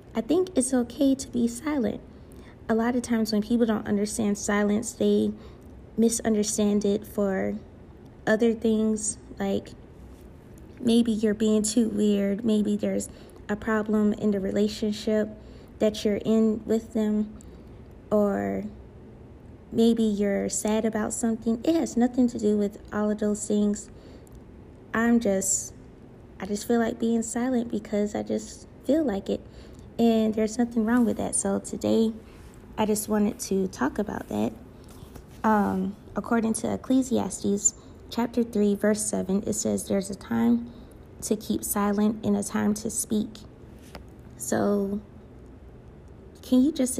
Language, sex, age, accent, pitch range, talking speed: English, female, 20-39, American, 205-225 Hz, 140 wpm